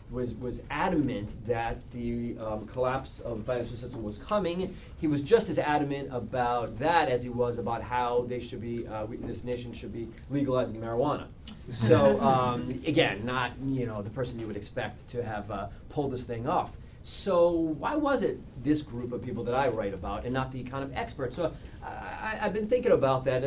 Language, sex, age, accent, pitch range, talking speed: English, male, 30-49, American, 110-140 Hz, 205 wpm